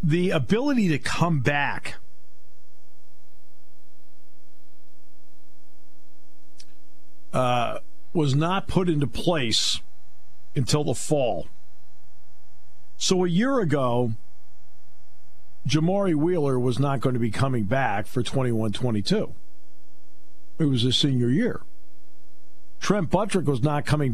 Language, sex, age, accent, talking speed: English, male, 50-69, American, 95 wpm